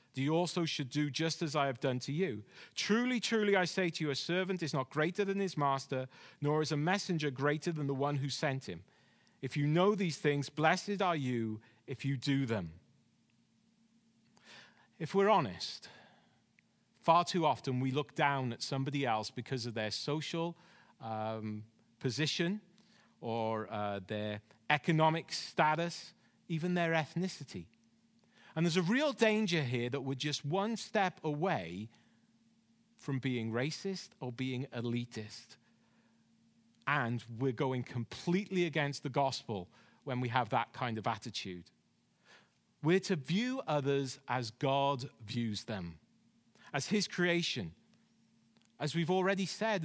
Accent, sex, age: British, male, 40-59